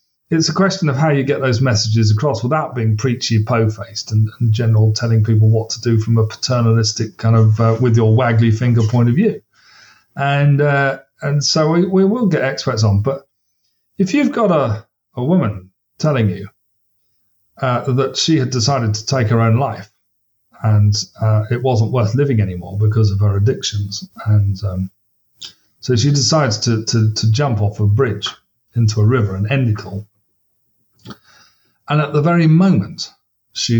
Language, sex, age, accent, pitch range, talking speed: English, male, 40-59, British, 105-130 Hz, 180 wpm